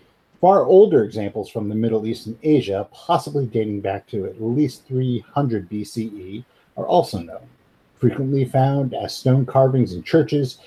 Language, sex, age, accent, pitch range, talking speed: English, male, 50-69, American, 110-135 Hz, 150 wpm